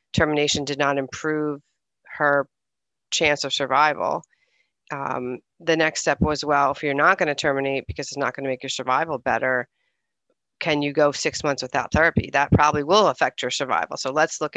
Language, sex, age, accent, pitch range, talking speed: English, female, 40-59, American, 135-155 Hz, 185 wpm